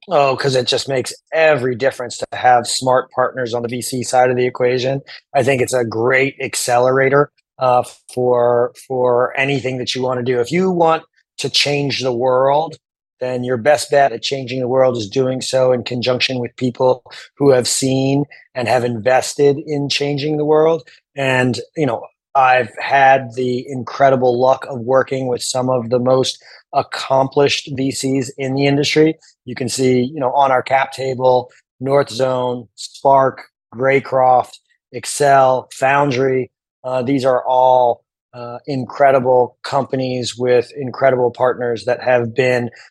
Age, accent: 30-49, American